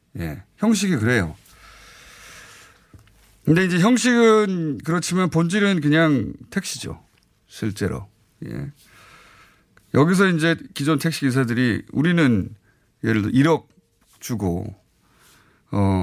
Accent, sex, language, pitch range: native, male, Korean, 105-160 Hz